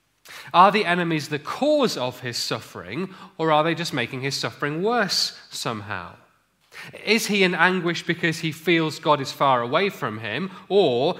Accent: British